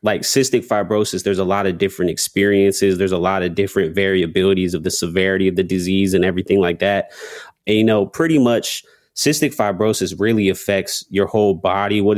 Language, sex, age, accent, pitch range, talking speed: English, male, 20-39, American, 95-110 Hz, 185 wpm